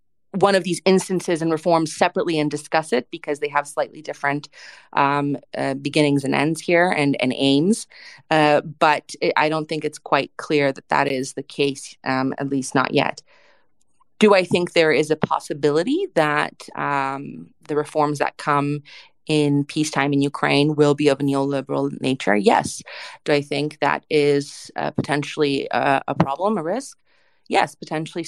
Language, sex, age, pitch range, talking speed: English, female, 30-49, 140-165 Hz, 170 wpm